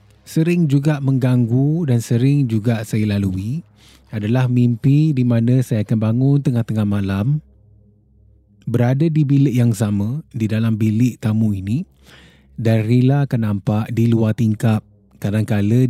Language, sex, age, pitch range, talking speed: Malay, male, 20-39, 105-130 Hz, 130 wpm